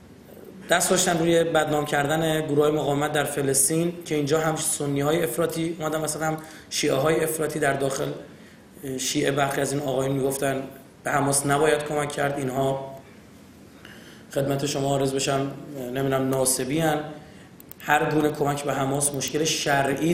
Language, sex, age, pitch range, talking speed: Persian, male, 30-49, 135-165 Hz, 90 wpm